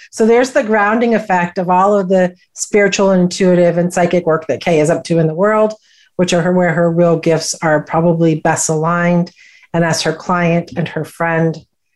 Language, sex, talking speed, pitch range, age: English, female, 195 wpm, 165-195 Hz, 50-69